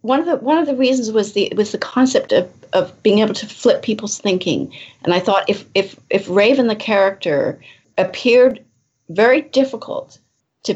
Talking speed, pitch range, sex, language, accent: 185 wpm, 160-215 Hz, female, English, American